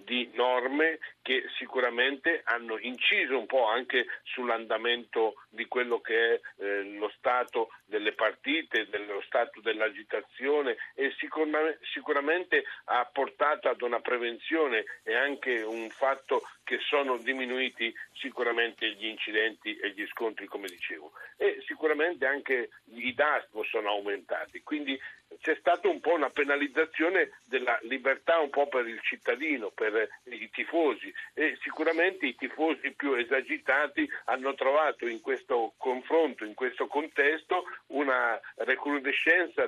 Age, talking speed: 50-69, 125 wpm